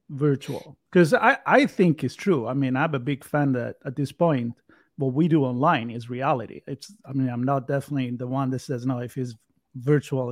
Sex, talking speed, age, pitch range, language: male, 215 wpm, 30-49, 130-155 Hz, English